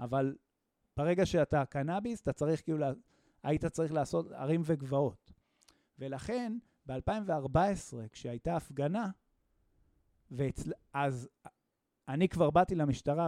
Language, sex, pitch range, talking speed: Hebrew, male, 125-165 Hz, 105 wpm